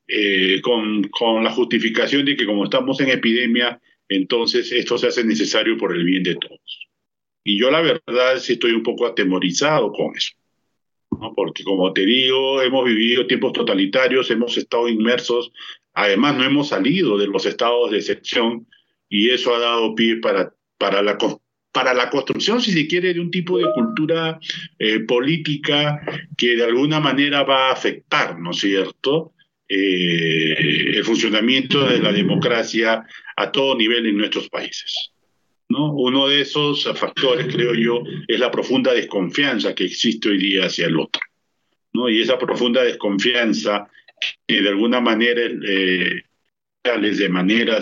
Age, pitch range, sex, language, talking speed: 50-69, 110-150 Hz, male, Spanish, 160 wpm